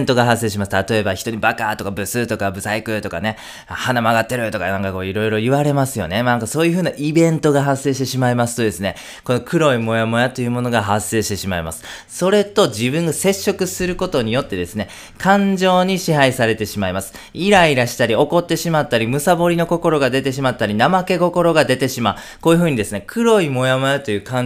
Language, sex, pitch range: Japanese, male, 110-180 Hz